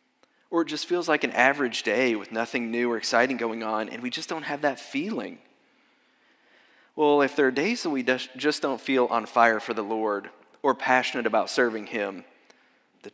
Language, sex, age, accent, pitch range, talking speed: English, male, 30-49, American, 110-135 Hz, 195 wpm